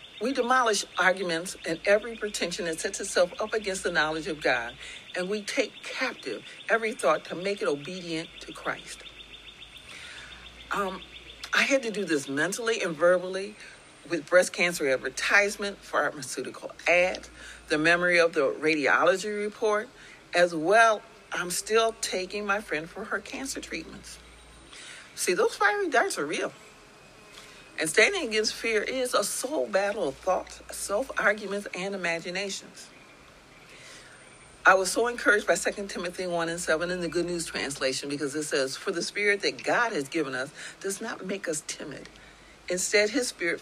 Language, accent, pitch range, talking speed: English, American, 170-215 Hz, 155 wpm